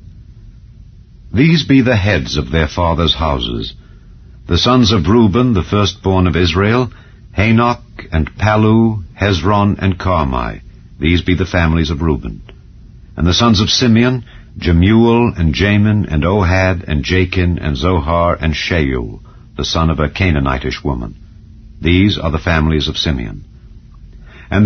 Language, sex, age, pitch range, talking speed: English, male, 60-79, 80-105 Hz, 140 wpm